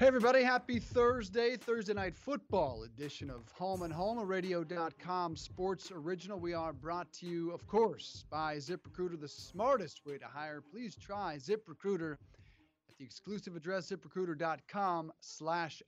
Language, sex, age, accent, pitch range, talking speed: English, male, 30-49, American, 160-200 Hz, 145 wpm